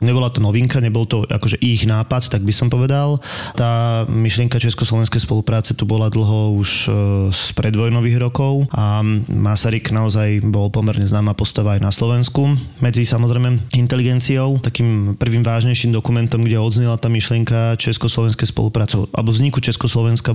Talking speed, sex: 145 wpm, male